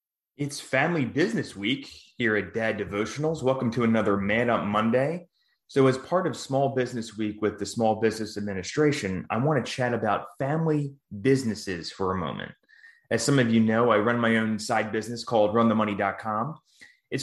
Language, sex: English, male